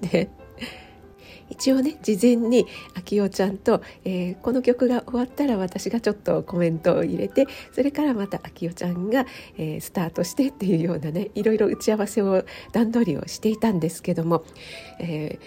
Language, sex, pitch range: Japanese, female, 165-230 Hz